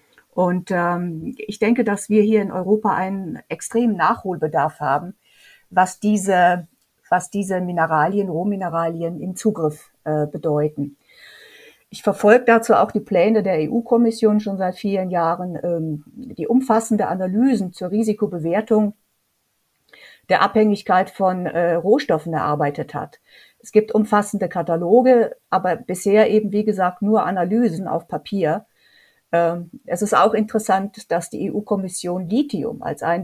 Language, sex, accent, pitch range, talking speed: German, female, German, 175-220 Hz, 130 wpm